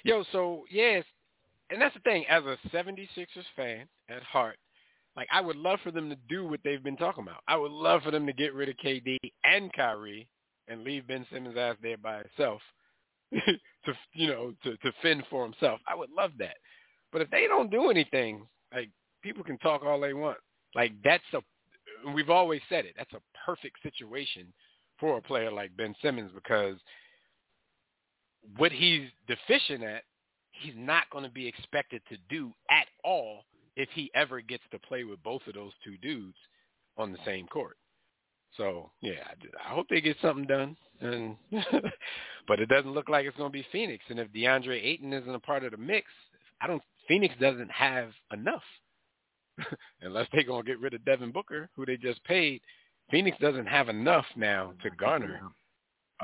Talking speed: 195 wpm